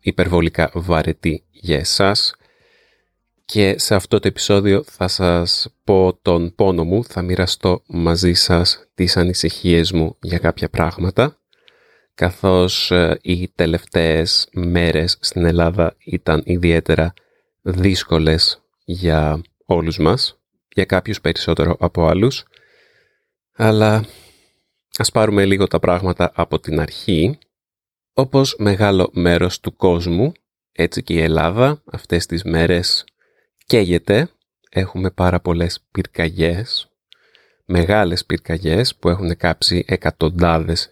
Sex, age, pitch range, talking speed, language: male, 30-49, 85-95 Hz, 110 wpm, Greek